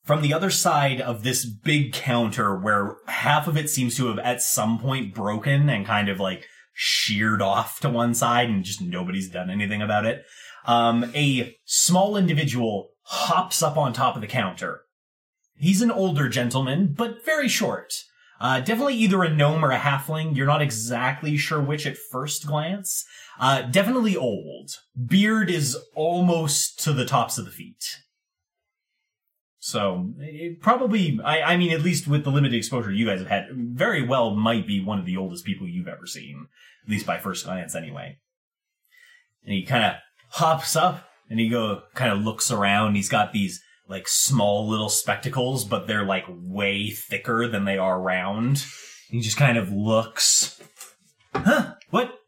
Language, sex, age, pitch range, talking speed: English, male, 30-49, 110-175 Hz, 170 wpm